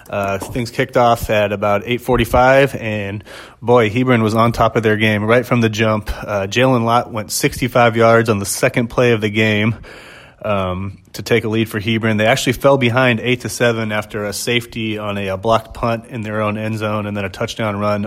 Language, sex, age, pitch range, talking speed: English, male, 30-49, 105-125 Hz, 220 wpm